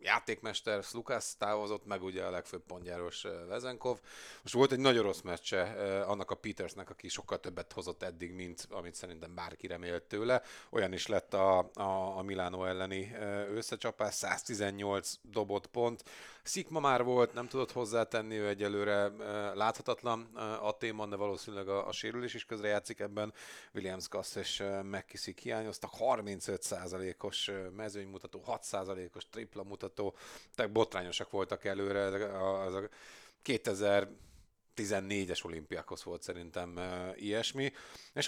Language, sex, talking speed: Hungarian, male, 125 wpm